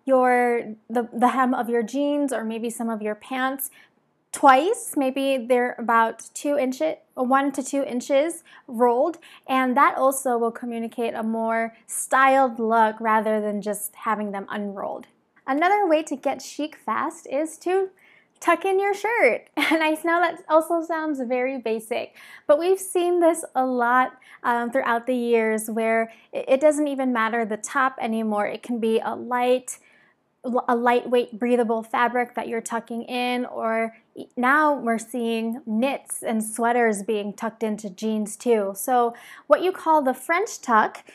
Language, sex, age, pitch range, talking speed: English, female, 20-39, 225-270 Hz, 160 wpm